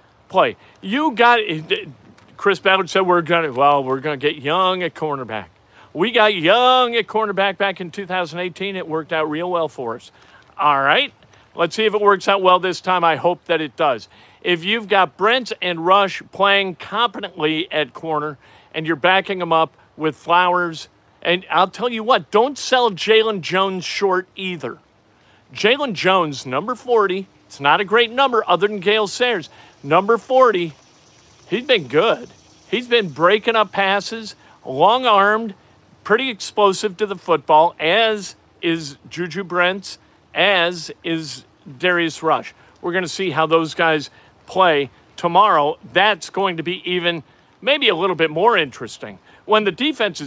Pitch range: 160-205 Hz